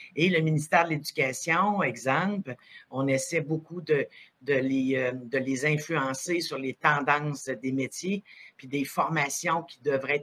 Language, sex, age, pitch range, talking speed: French, female, 60-79, 130-155 Hz, 135 wpm